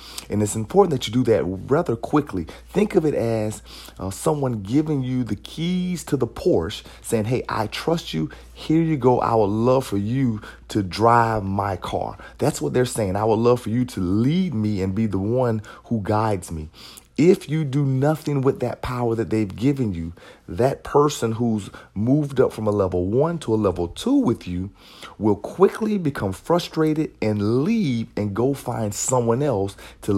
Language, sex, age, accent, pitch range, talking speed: English, male, 40-59, American, 105-140 Hz, 190 wpm